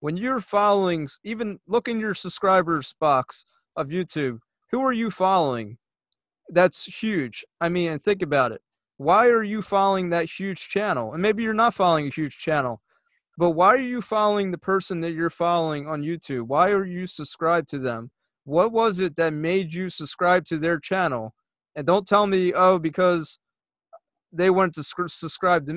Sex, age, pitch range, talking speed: male, 30-49, 155-195 Hz, 180 wpm